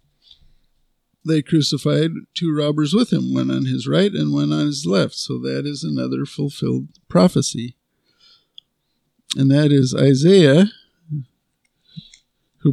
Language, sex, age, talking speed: English, male, 50-69, 125 wpm